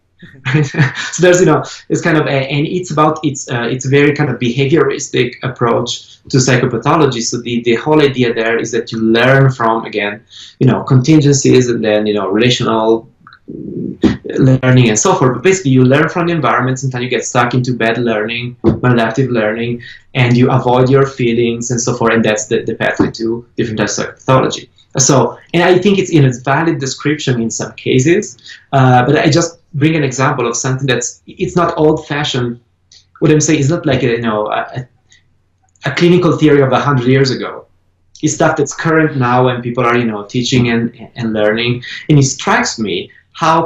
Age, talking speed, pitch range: 20-39, 200 wpm, 115-150 Hz